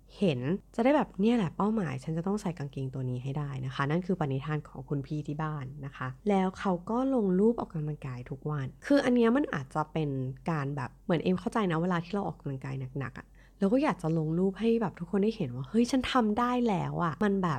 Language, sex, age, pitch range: Thai, female, 20-39, 150-205 Hz